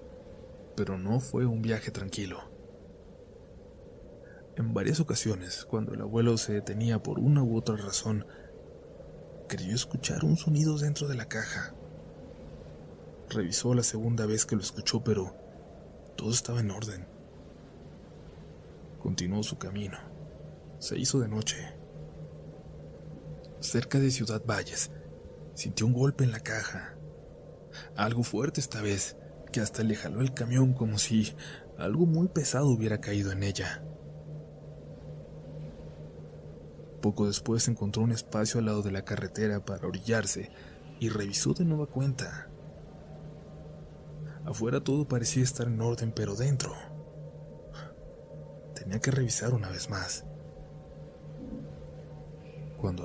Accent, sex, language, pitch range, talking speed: Mexican, male, Spanish, 100-130 Hz, 120 wpm